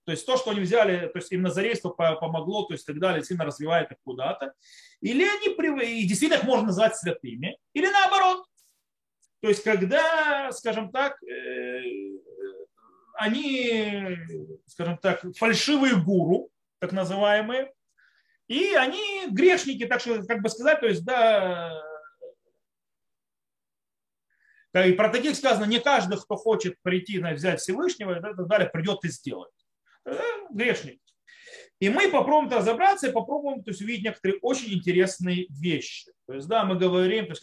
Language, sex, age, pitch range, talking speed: Russian, male, 30-49, 185-275 Hz, 140 wpm